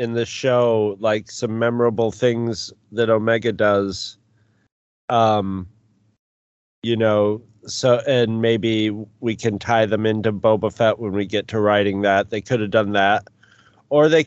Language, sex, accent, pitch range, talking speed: English, male, American, 105-130 Hz, 150 wpm